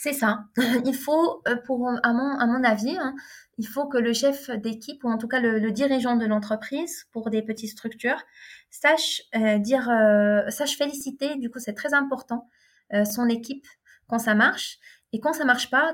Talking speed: 205 wpm